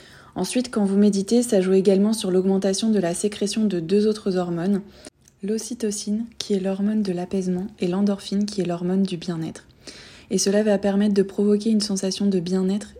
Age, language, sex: 20-39, French, female